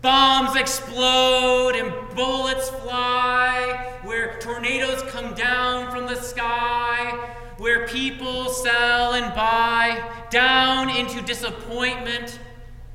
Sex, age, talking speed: male, 30-49, 95 wpm